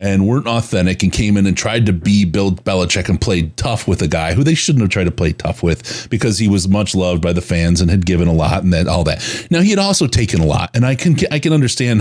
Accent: American